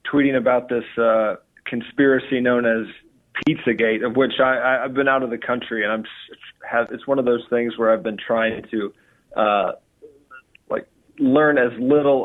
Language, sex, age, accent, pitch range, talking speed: English, male, 40-59, American, 110-130 Hz, 165 wpm